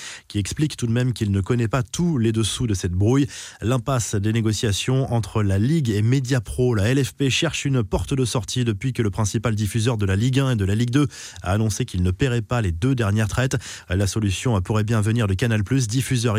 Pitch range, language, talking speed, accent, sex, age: 105-135 Hz, French, 225 wpm, French, male, 20-39